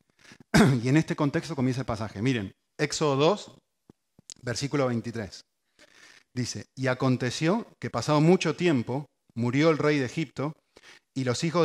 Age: 30-49